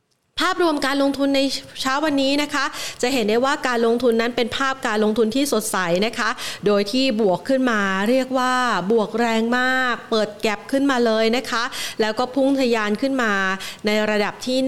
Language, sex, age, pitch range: Thai, female, 30-49, 215-270 Hz